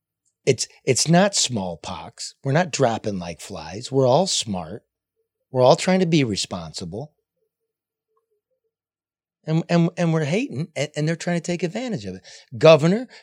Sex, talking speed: male, 145 wpm